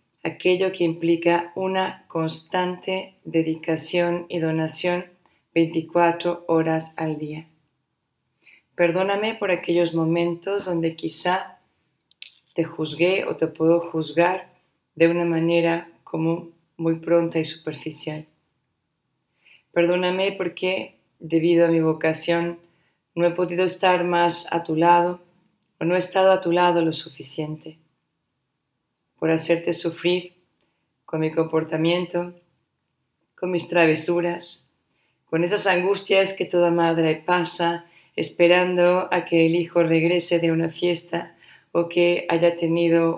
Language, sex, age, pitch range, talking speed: Spanish, female, 30-49, 165-175 Hz, 115 wpm